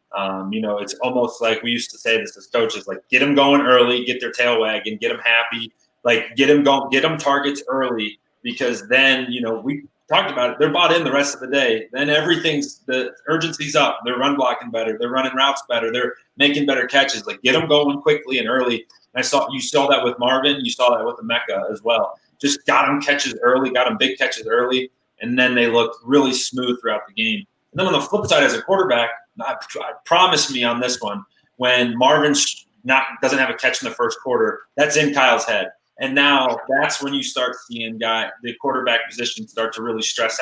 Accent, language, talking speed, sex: American, English, 225 wpm, male